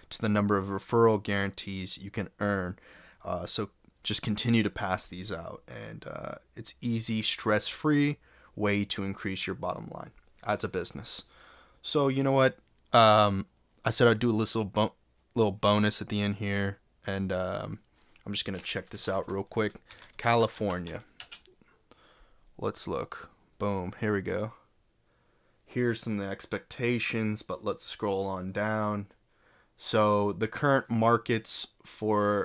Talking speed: 150 wpm